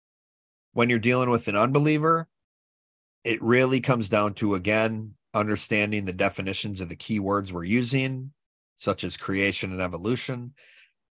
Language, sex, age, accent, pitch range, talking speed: English, male, 40-59, American, 95-120 Hz, 135 wpm